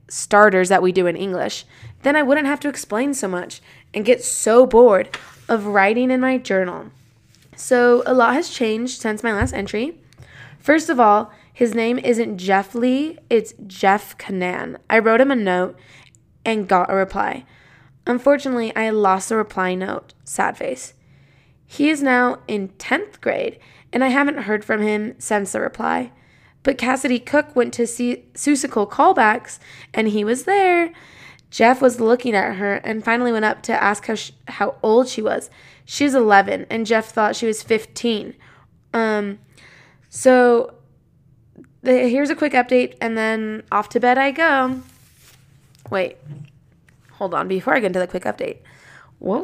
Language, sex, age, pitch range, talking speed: English, female, 20-39, 190-250 Hz, 165 wpm